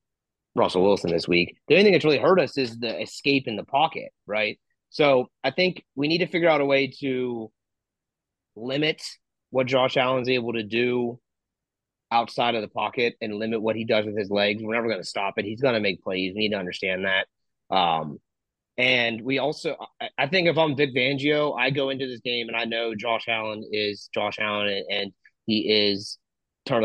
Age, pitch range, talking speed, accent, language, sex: 30-49, 110-150 Hz, 210 wpm, American, English, male